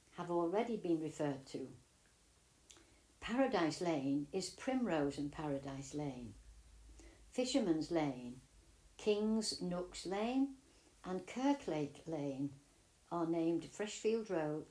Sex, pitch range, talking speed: female, 140-210 Hz, 100 wpm